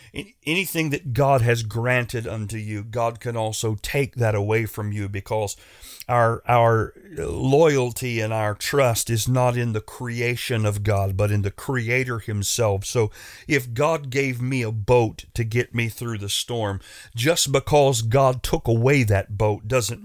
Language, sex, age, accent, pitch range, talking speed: English, male, 40-59, American, 115-145 Hz, 165 wpm